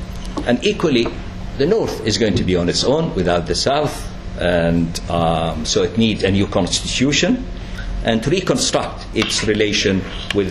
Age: 60-79